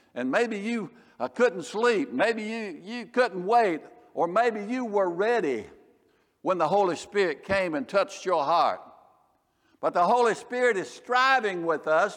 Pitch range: 175-220 Hz